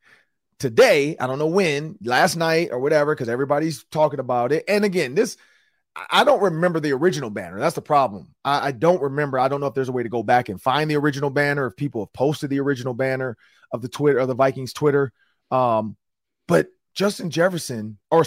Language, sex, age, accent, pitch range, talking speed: English, male, 30-49, American, 120-165 Hz, 210 wpm